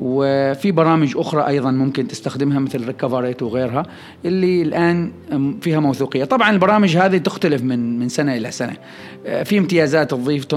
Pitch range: 130-170 Hz